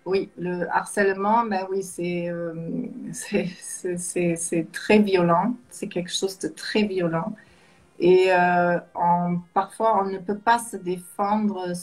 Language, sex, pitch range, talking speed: French, female, 175-215 Hz, 145 wpm